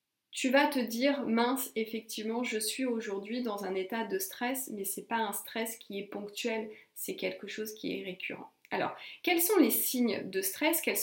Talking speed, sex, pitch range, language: 200 wpm, female, 205-255 Hz, French